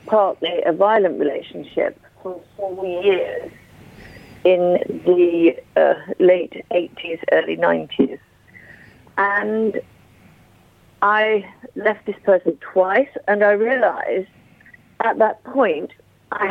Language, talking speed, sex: English, 100 wpm, female